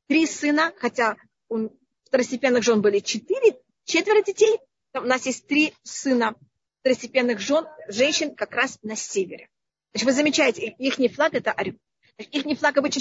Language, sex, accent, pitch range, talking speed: Russian, female, native, 245-315 Hz, 155 wpm